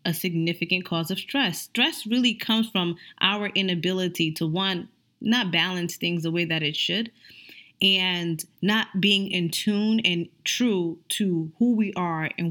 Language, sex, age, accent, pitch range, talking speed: English, female, 20-39, American, 170-215 Hz, 160 wpm